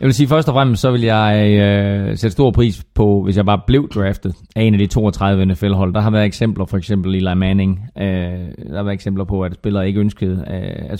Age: 30-49